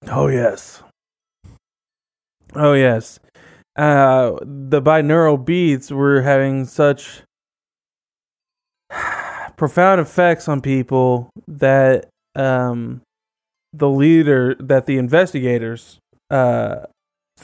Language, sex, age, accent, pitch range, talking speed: English, male, 20-39, American, 125-160 Hz, 80 wpm